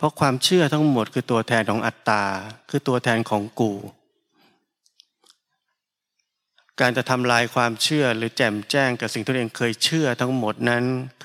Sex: male